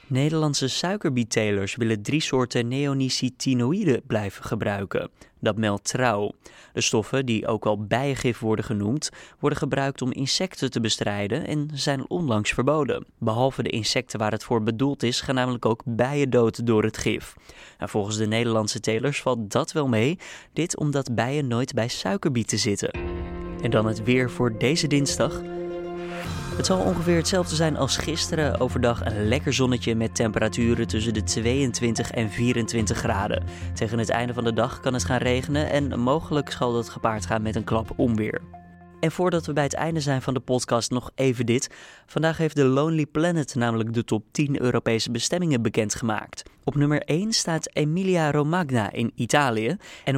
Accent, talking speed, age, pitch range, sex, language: Dutch, 165 wpm, 20-39, 110-145 Hz, male, Dutch